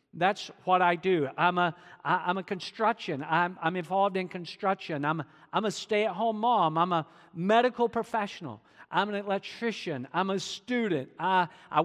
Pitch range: 155-210 Hz